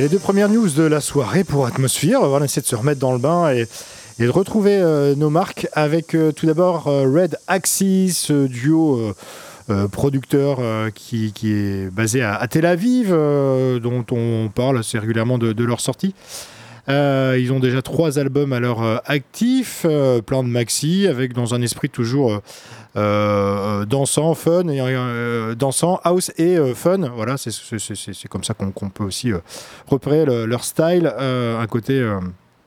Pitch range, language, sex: 115-155 Hz, French, male